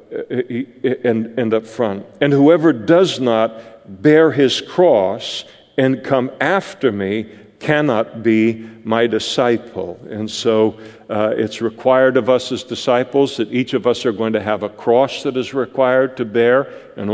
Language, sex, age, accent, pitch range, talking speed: English, male, 50-69, American, 110-130 Hz, 155 wpm